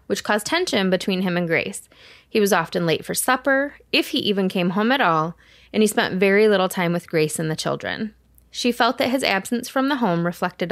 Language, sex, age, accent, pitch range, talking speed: English, female, 20-39, American, 170-225 Hz, 225 wpm